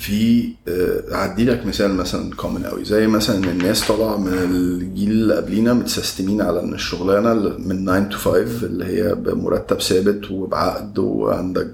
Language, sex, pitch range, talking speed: Arabic, male, 95-120 Hz, 150 wpm